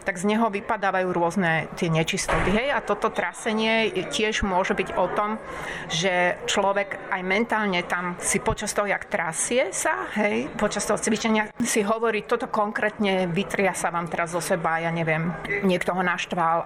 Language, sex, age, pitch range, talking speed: Slovak, female, 30-49, 175-210 Hz, 160 wpm